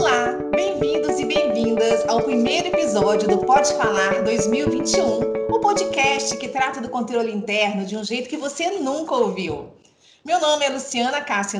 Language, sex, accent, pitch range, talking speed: Portuguese, female, Brazilian, 195-275 Hz, 155 wpm